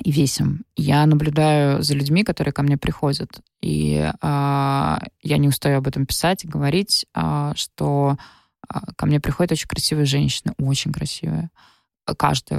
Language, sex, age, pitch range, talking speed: Russian, female, 20-39, 140-160 Hz, 150 wpm